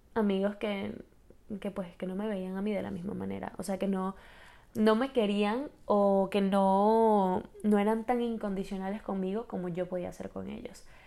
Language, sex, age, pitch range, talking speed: Spanish, female, 10-29, 190-220 Hz, 190 wpm